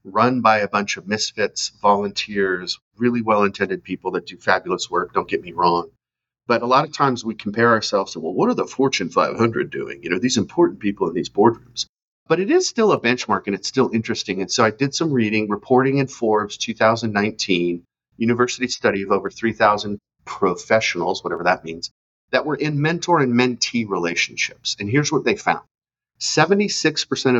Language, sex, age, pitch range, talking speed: English, male, 40-59, 110-145 Hz, 185 wpm